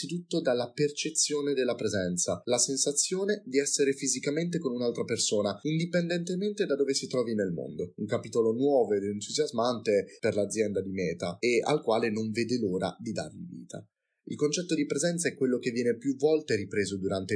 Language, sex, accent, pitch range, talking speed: Italian, male, native, 105-150 Hz, 175 wpm